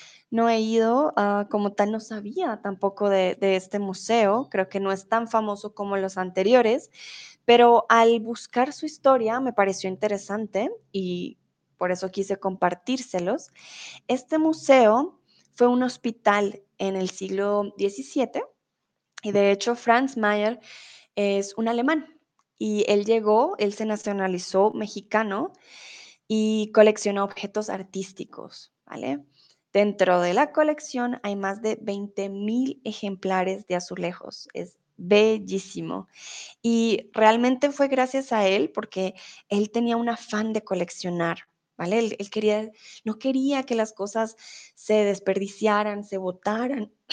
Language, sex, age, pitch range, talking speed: Spanish, female, 20-39, 200-235 Hz, 130 wpm